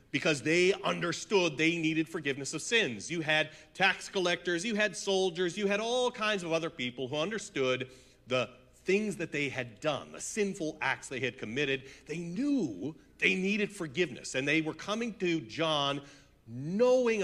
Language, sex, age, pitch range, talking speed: English, male, 40-59, 120-175 Hz, 165 wpm